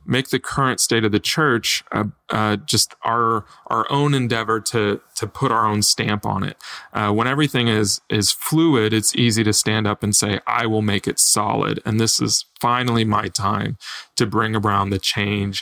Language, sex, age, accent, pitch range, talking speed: English, male, 30-49, American, 105-125 Hz, 195 wpm